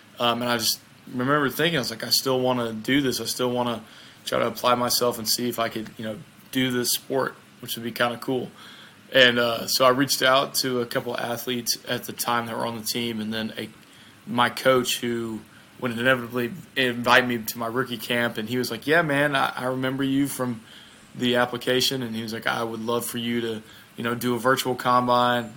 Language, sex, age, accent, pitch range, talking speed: English, male, 20-39, American, 115-130 Hz, 235 wpm